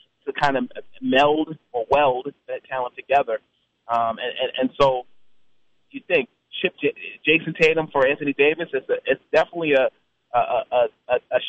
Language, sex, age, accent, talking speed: English, male, 30-49, American, 150 wpm